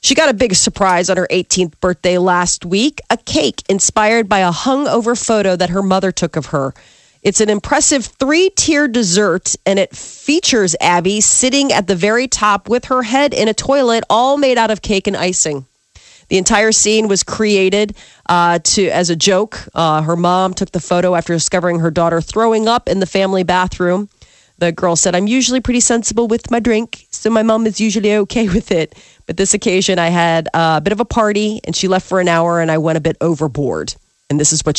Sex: female